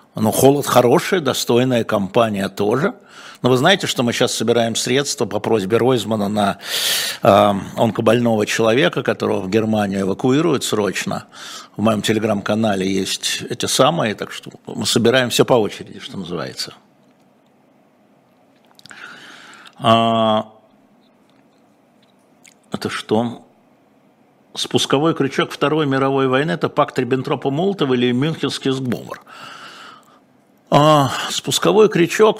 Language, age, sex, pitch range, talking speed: Russian, 60-79, male, 110-150 Hz, 105 wpm